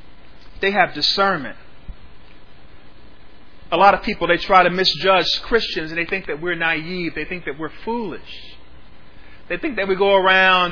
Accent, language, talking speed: American, English, 160 wpm